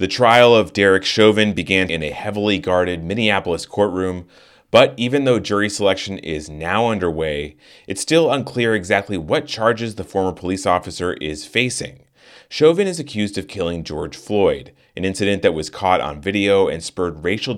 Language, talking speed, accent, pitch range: English, 165 wpm, American, 85-115 Hz